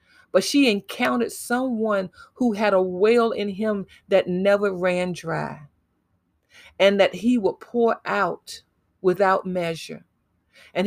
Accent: American